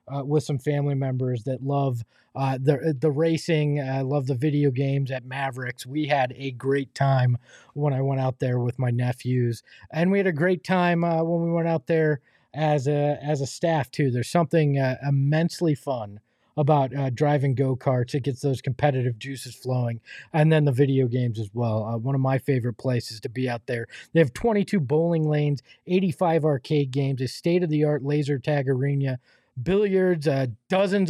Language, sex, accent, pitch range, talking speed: English, male, American, 130-155 Hz, 185 wpm